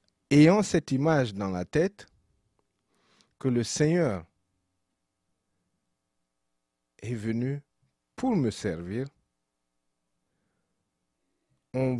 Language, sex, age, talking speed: French, male, 50-69, 75 wpm